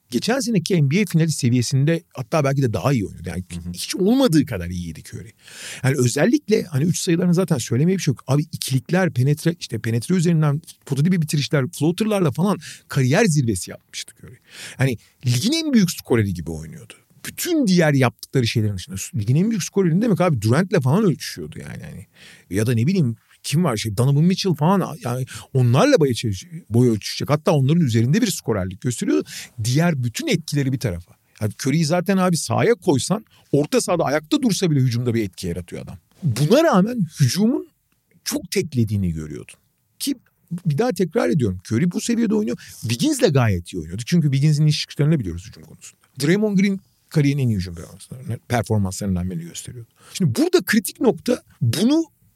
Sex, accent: male, native